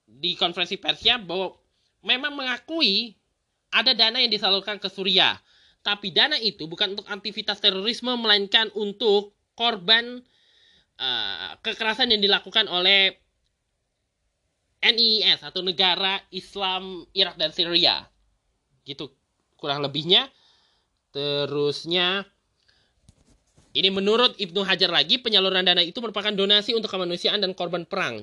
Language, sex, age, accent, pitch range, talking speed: Indonesian, male, 20-39, native, 180-225 Hz, 115 wpm